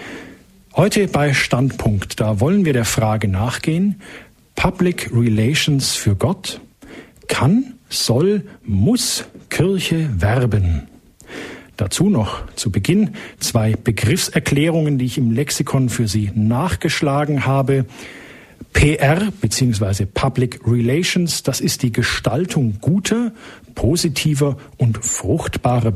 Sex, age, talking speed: male, 50-69, 100 wpm